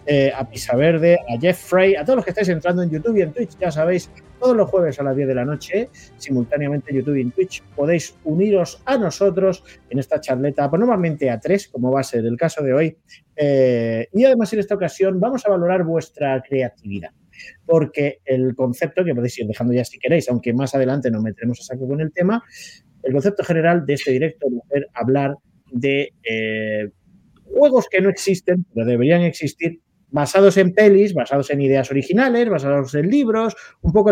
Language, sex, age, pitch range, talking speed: Spanish, male, 30-49, 130-195 Hz, 200 wpm